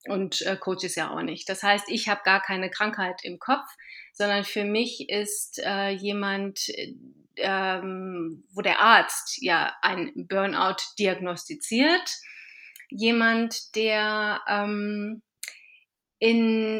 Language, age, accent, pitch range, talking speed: German, 30-49, German, 200-230 Hz, 125 wpm